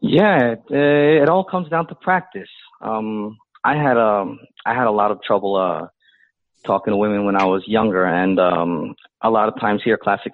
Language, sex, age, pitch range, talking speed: English, male, 30-49, 100-125 Hz, 210 wpm